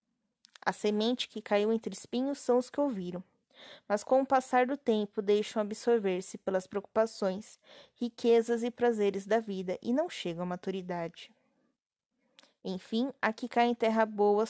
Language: Portuguese